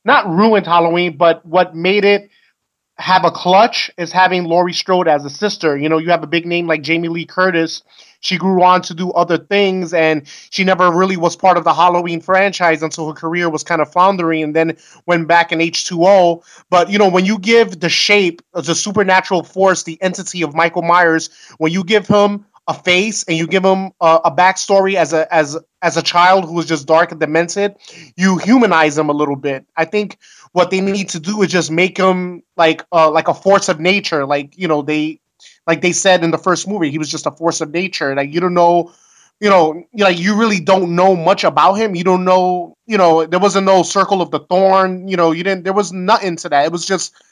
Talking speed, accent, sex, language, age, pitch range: 225 wpm, American, male, English, 30-49, 165-190 Hz